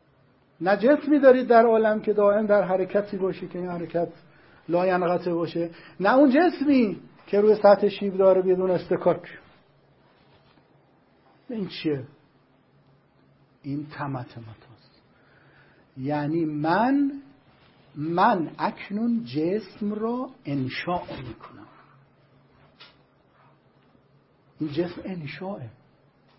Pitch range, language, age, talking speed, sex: 155-215 Hz, Persian, 60-79, 95 wpm, male